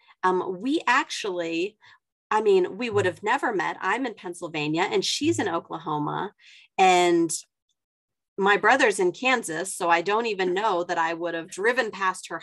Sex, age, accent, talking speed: female, 40-59, American, 165 wpm